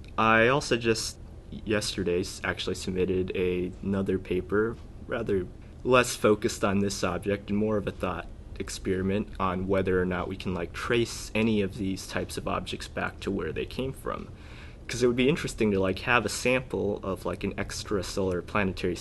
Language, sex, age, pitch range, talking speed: English, male, 20-39, 90-100 Hz, 175 wpm